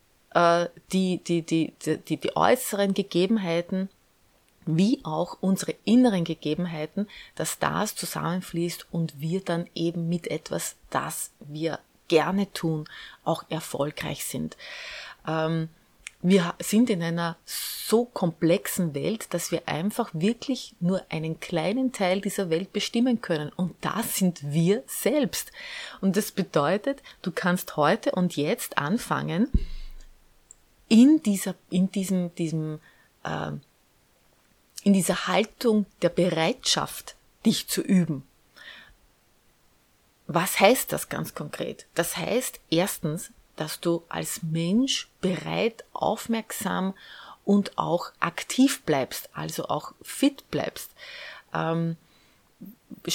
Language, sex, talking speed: German, female, 110 wpm